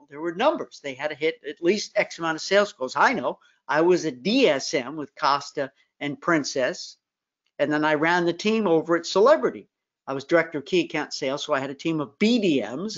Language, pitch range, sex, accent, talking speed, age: English, 160-225 Hz, male, American, 215 wpm, 50-69